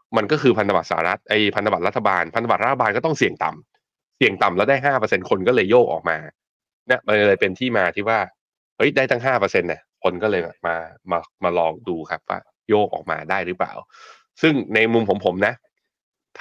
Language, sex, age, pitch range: Thai, male, 20-39, 95-115 Hz